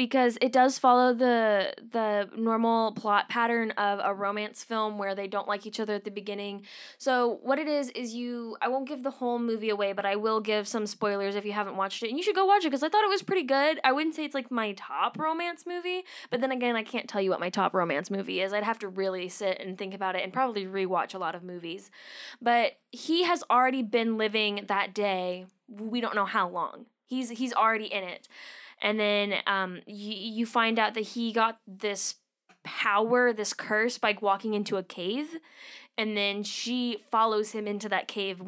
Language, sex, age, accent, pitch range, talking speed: English, female, 10-29, American, 200-245 Hz, 220 wpm